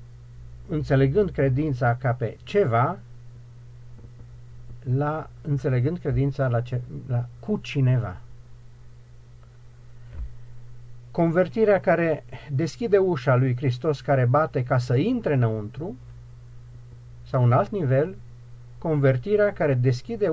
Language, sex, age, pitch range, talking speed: Romanian, male, 50-69, 120-140 Hz, 95 wpm